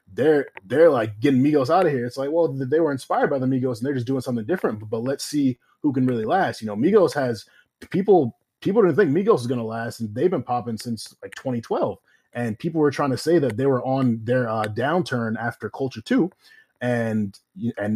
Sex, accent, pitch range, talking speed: male, American, 115-145 Hz, 230 wpm